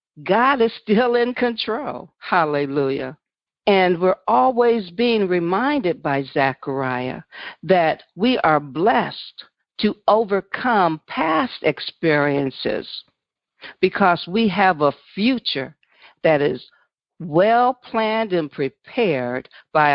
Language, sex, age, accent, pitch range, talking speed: English, female, 60-79, American, 150-230 Hz, 100 wpm